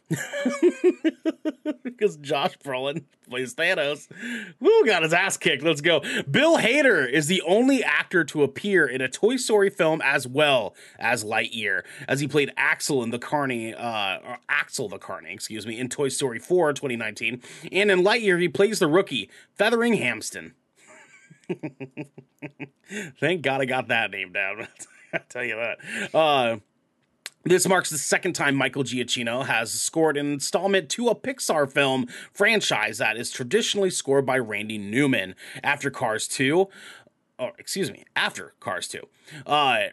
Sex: male